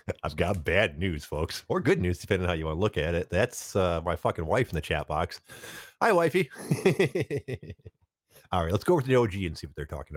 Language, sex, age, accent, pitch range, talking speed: English, male, 50-69, American, 80-105 Hz, 240 wpm